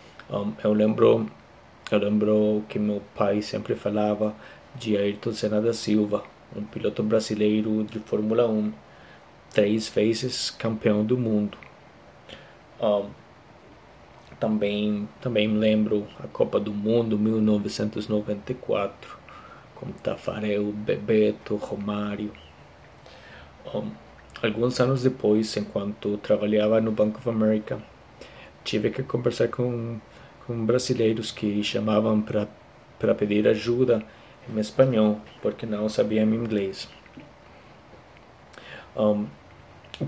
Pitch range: 105-115 Hz